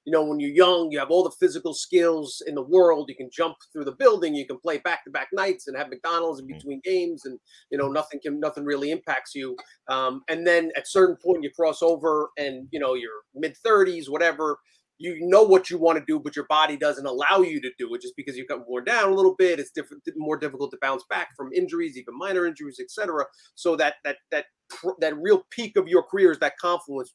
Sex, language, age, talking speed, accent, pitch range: male, English, 30-49, 235 wpm, American, 145-215 Hz